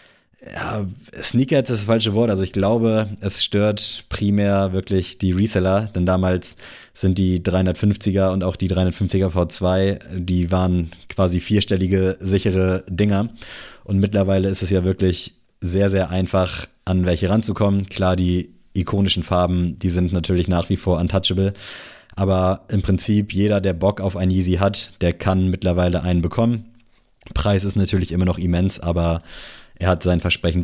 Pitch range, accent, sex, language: 90-105 Hz, German, male, German